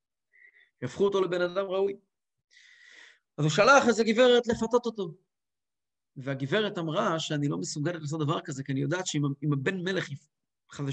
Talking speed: 150 wpm